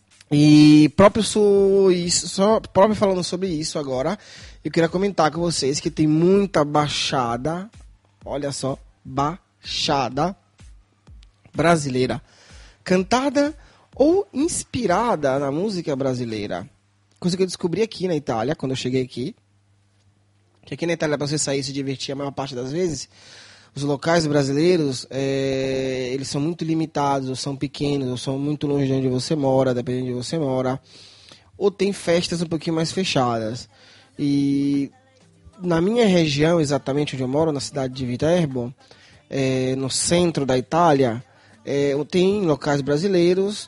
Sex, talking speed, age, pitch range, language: male, 145 wpm, 20-39, 130-170 Hz, Italian